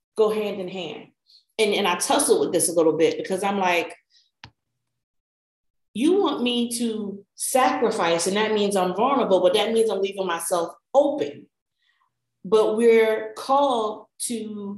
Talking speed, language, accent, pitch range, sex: 150 wpm, English, American, 195-255 Hz, female